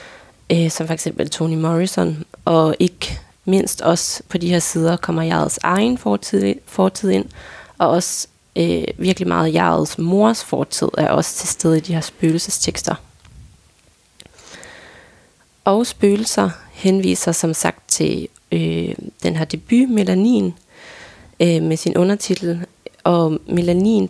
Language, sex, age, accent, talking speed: Danish, female, 20-39, native, 125 wpm